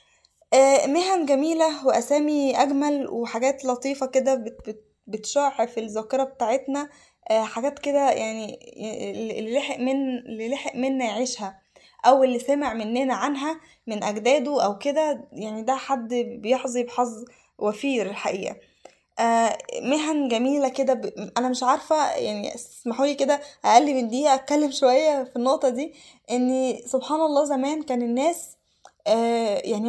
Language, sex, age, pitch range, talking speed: Arabic, female, 10-29, 235-285 Hz, 120 wpm